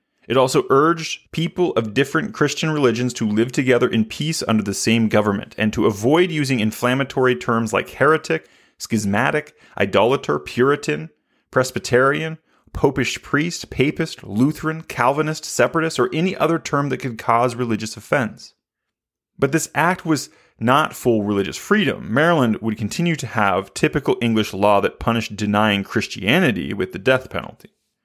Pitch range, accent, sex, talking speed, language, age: 110-150 Hz, American, male, 145 wpm, English, 30-49